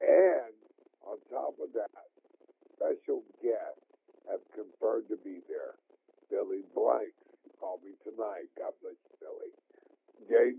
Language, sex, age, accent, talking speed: English, male, 60-79, American, 125 wpm